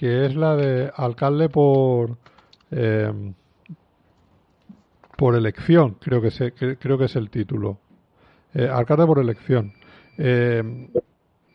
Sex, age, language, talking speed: male, 50-69, Spanish, 115 wpm